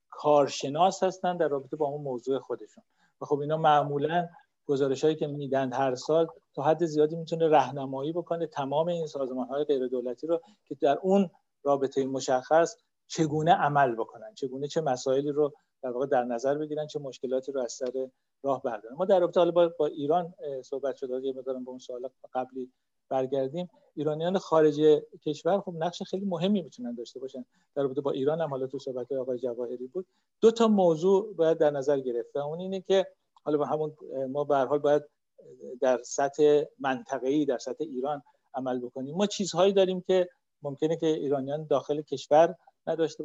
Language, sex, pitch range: Persian, male, 130-160 Hz